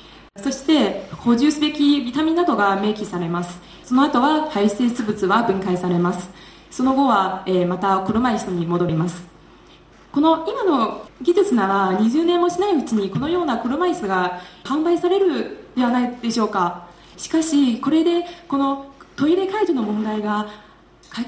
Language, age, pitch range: Japanese, 20-39, 190-290 Hz